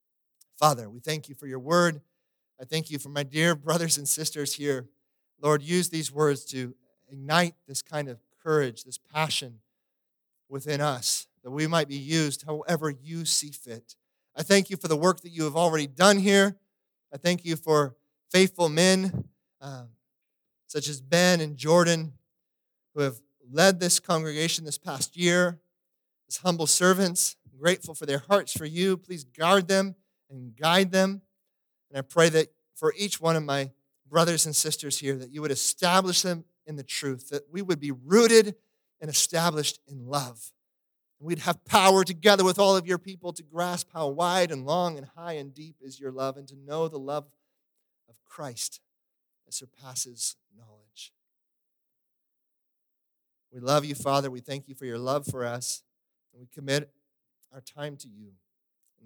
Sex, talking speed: male, 175 wpm